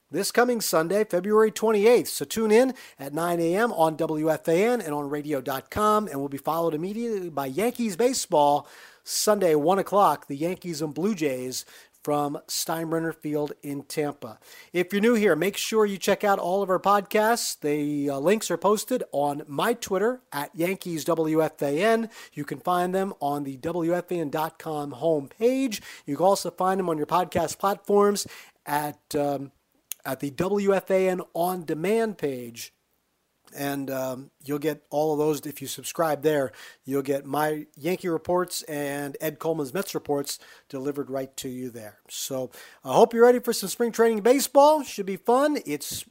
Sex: male